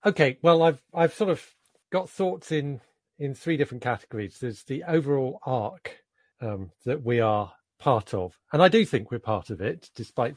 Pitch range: 105-145 Hz